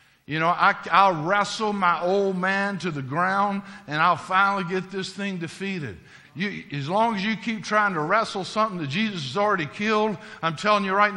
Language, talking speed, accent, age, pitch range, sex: English, 190 wpm, American, 60-79, 140-205 Hz, male